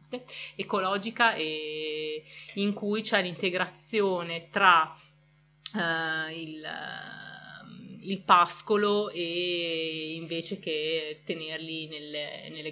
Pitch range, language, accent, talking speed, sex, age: 160-190 Hz, Italian, native, 85 wpm, female, 30-49